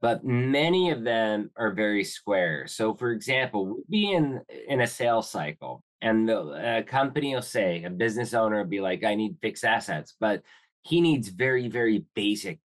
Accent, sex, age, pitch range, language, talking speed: American, male, 20-39, 105-120 Hz, English, 185 wpm